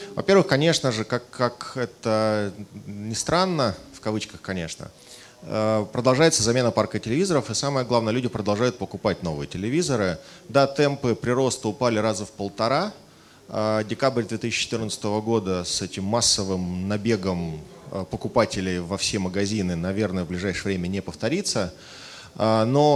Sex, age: male, 30-49